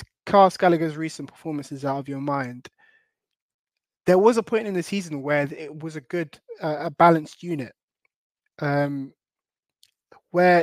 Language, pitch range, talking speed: English, 145-175 Hz, 145 wpm